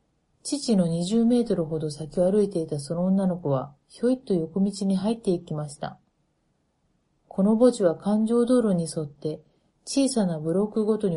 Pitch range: 160-215 Hz